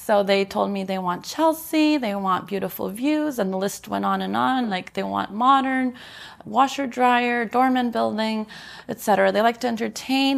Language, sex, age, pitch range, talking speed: English, female, 20-39, 190-240 Hz, 175 wpm